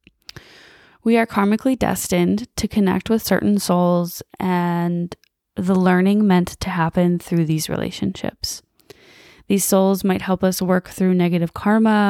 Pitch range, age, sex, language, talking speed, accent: 175-195 Hz, 20-39, female, English, 135 wpm, American